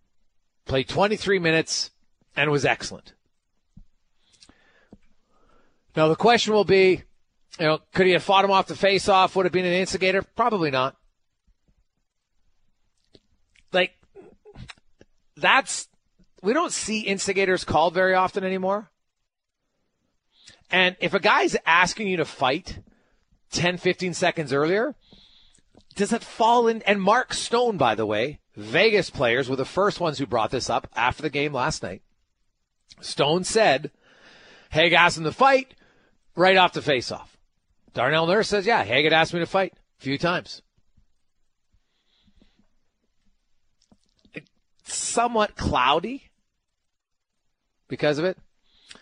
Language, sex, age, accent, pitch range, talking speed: English, male, 40-59, American, 155-200 Hz, 130 wpm